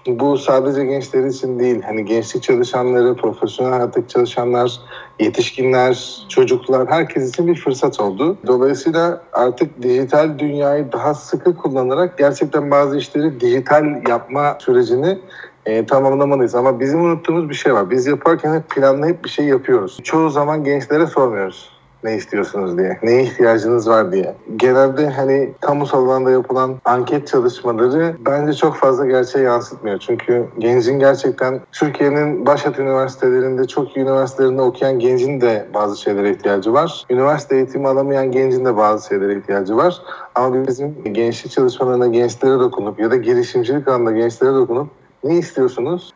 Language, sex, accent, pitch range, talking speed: Turkish, male, native, 125-155 Hz, 140 wpm